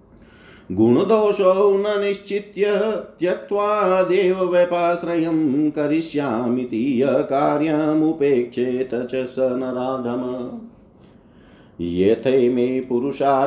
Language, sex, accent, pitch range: Hindi, male, native, 130-165 Hz